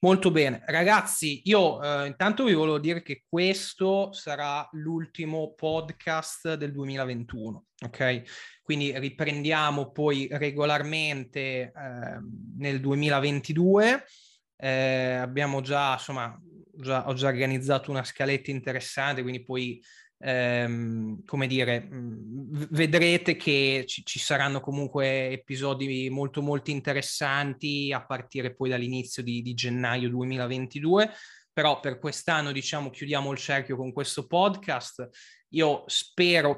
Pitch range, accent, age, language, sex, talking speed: 130-150 Hz, native, 20-39, Italian, male, 115 wpm